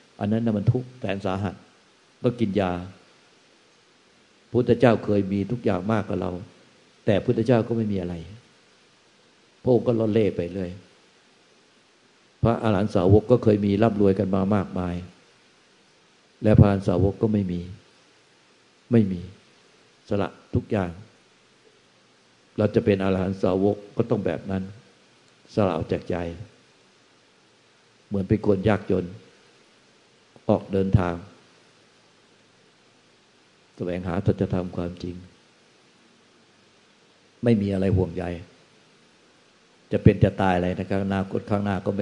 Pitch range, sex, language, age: 90-110 Hz, male, Thai, 60-79